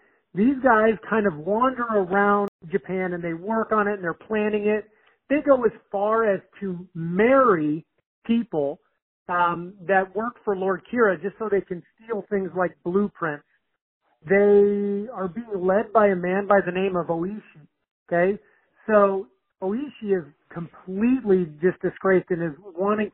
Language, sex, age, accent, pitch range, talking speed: English, male, 40-59, American, 180-215 Hz, 155 wpm